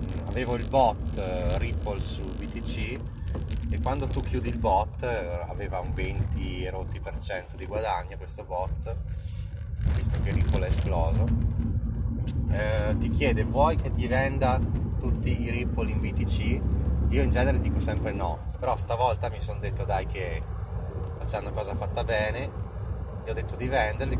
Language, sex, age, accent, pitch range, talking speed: Italian, male, 30-49, native, 90-110 Hz, 145 wpm